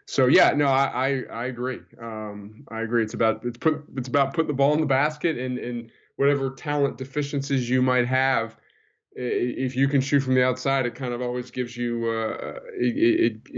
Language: English